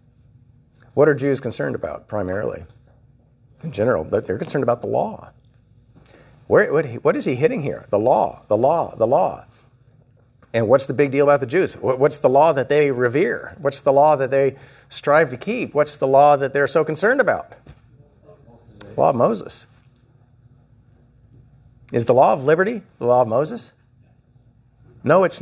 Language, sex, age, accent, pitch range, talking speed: English, male, 50-69, American, 125-165 Hz, 170 wpm